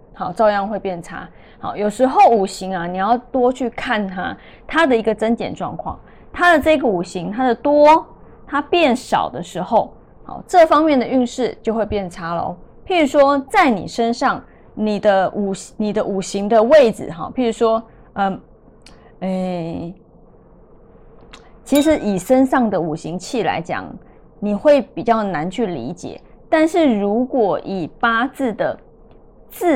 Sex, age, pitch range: female, 20-39, 200-265 Hz